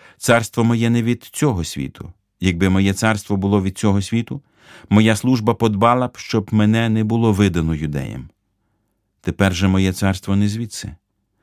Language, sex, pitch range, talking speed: Ukrainian, male, 95-115 Hz, 150 wpm